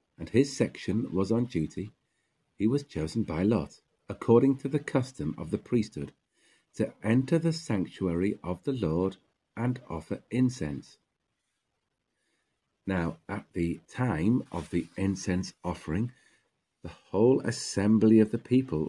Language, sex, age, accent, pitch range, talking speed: English, male, 50-69, British, 90-125 Hz, 135 wpm